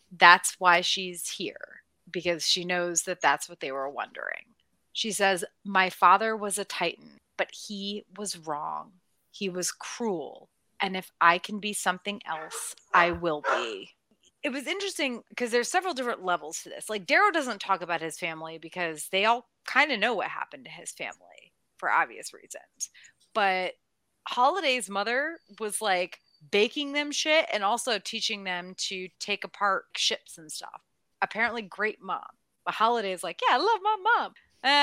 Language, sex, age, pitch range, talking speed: English, female, 30-49, 175-225 Hz, 170 wpm